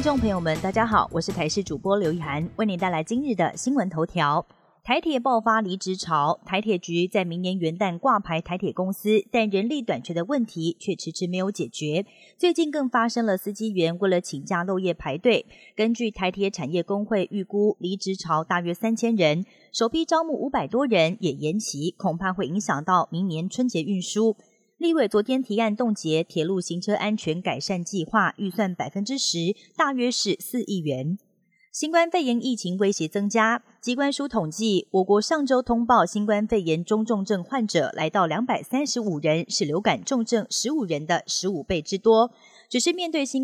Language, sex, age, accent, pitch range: Chinese, female, 30-49, native, 175-230 Hz